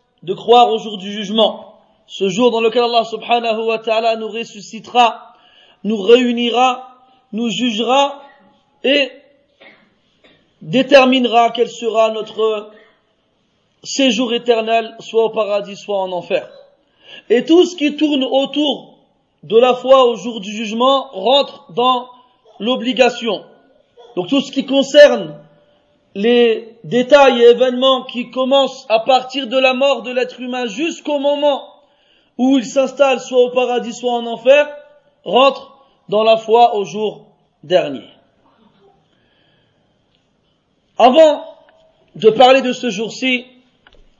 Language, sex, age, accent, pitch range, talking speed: French, male, 40-59, French, 225-265 Hz, 125 wpm